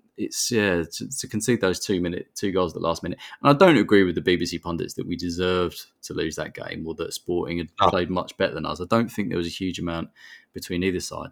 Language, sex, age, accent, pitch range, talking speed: English, male, 20-39, British, 95-130 Hz, 260 wpm